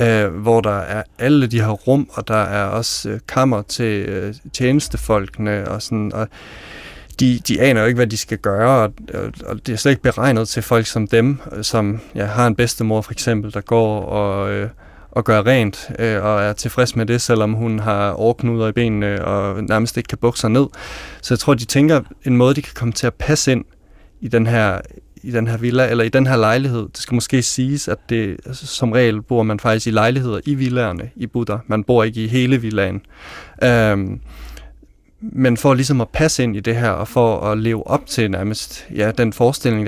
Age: 30-49